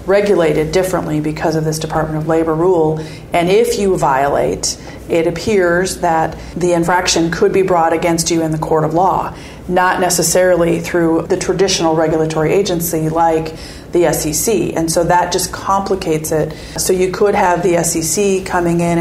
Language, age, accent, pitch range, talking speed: English, 40-59, American, 160-175 Hz, 165 wpm